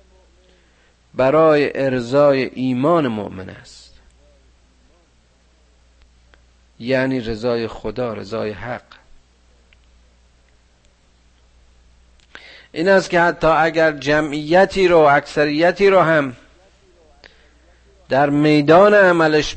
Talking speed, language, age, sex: 70 wpm, Persian, 50-69, male